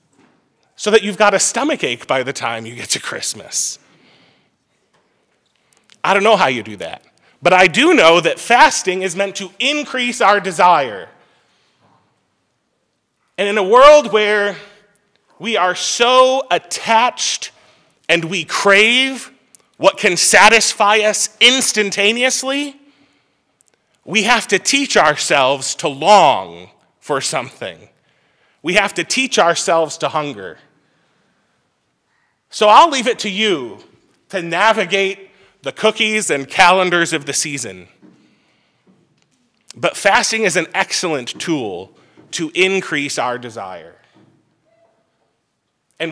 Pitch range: 170-225 Hz